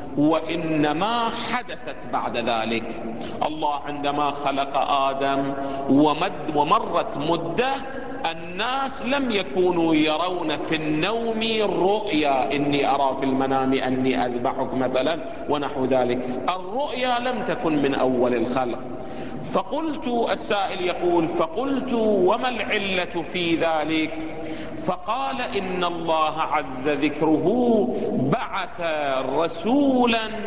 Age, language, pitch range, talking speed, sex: 50-69, Arabic, 145-210 Hz, 95 wpm, male